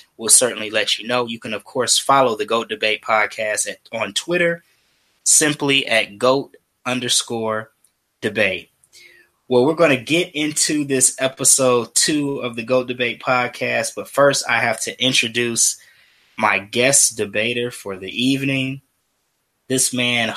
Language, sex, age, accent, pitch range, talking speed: English, male, 20-39, American, 105-130 Hz, 145 wpm